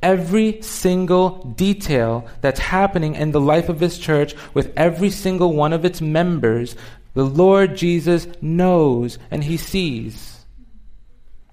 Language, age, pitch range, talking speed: English, 40-59, 130-175 Hz, 130 wpm